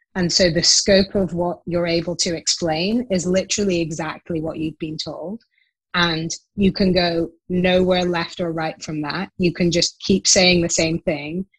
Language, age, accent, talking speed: English, 20-39, British, 180 wpm